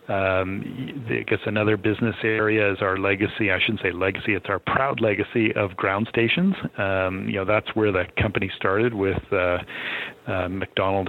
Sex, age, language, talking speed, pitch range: male, 40-59, English, 175 wpm, 95-110 Hz